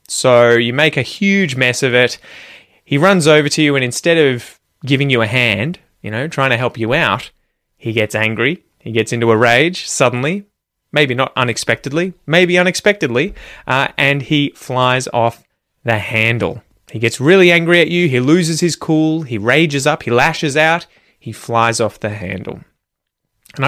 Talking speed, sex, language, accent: 175 wpm, male, English, Australian